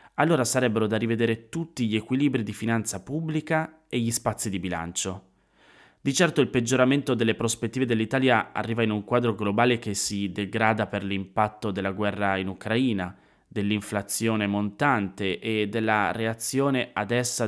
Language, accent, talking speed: Italian, native, 150 wpm